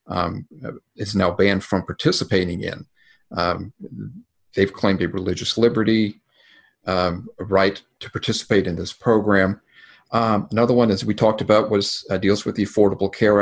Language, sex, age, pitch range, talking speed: English, male, 50-69, 95-110 Hz, 150 wpm